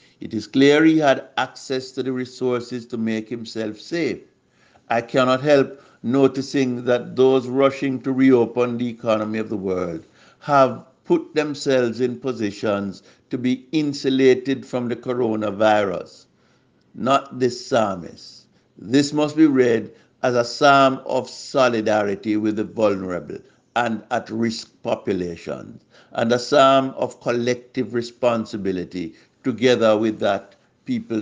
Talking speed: 125 wpm